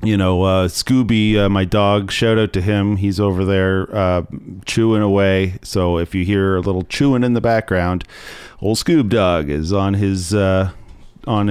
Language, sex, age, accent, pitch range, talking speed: English, male, 40-59, American, 95-110 Hz, 180 wpm